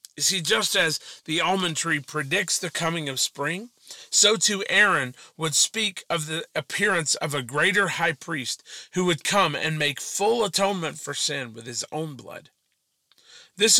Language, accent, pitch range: English, American, 145-175 Hz